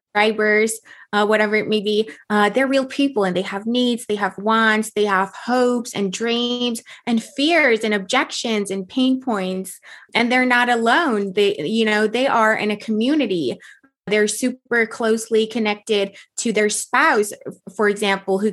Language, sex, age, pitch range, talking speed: English, female, 20-39, 195-240 Hz, 165 wpm